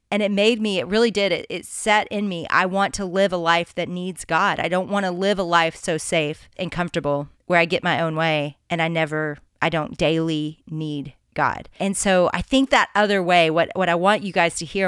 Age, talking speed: 30-49, 245 wpm